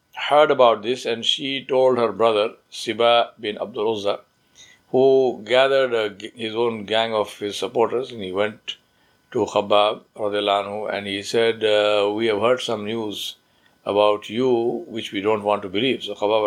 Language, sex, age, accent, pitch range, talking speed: English, male, 60-79, Indian, 100-120 Hz, 155 wpm